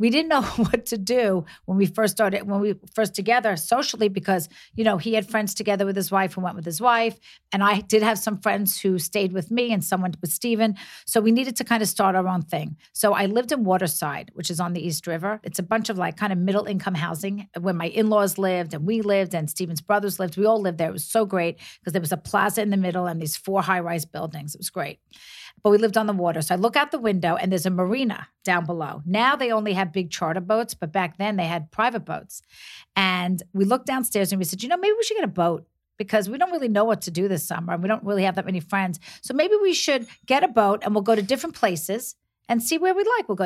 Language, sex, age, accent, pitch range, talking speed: English, female, 40-59, American, 180-220 Hz, 270 wpm